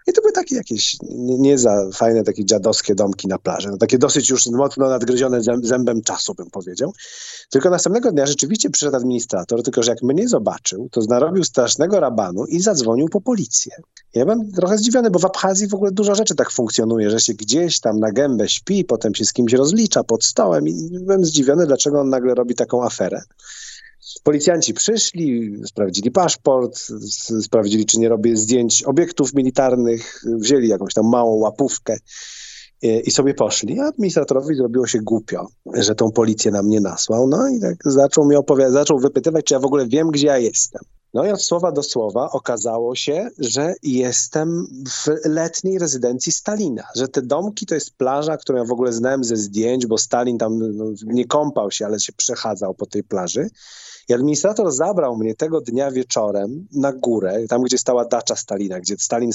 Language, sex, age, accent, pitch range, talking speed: Polish, male, 40-59, native, 115-160 Hz, 185 wpm